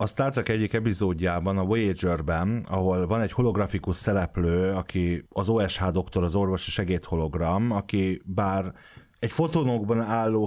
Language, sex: Hungarian, male